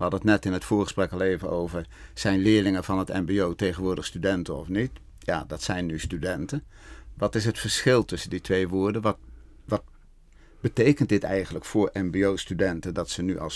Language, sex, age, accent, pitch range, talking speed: Dutch, male, 50-69, Dutch, 90-105 Hz, 190 wpm